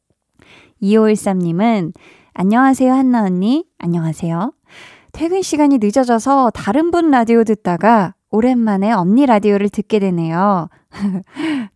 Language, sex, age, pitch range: Korean, female, 20-39, 195-250 Hz